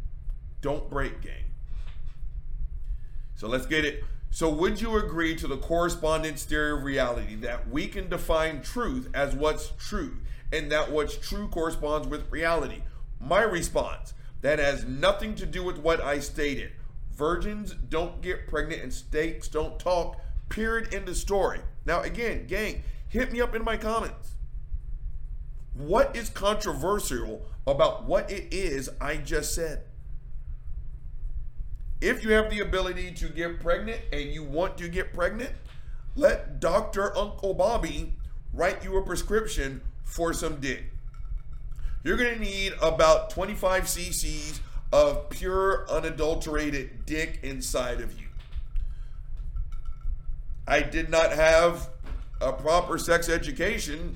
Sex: male